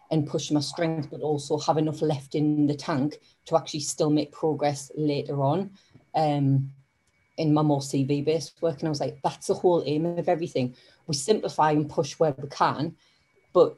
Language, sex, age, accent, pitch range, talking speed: English, female, 30-49, British, 145-165 Hz, 190 wpm